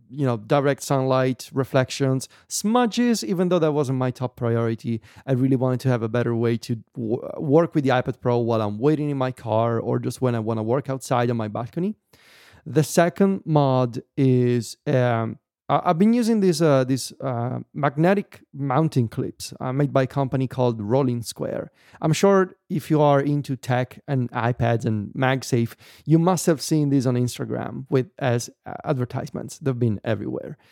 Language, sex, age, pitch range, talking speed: English, male, 30-49, 120-145 Hz, 175 wpm